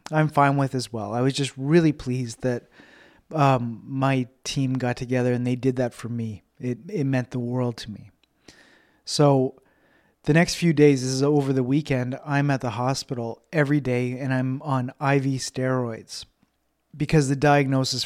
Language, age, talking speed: English, 30-49, 175 wpm